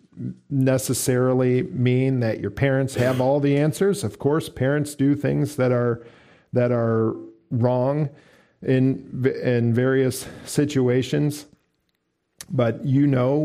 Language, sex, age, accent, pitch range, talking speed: English, male, 50-69, American, 120-145 Hz, 115 wpm